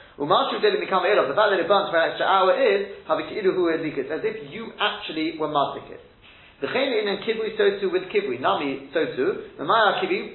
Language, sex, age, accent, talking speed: English, male, 30-49, British, 205 wpm